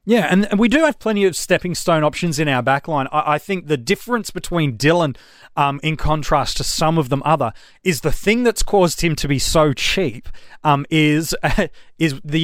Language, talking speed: English, 210 wpm